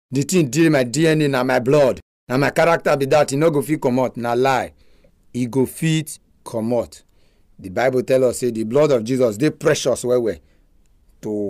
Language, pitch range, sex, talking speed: English, 95-135 Hz, male, 205 wpm